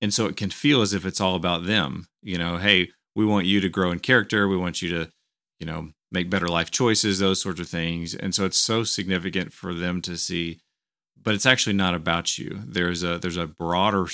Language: English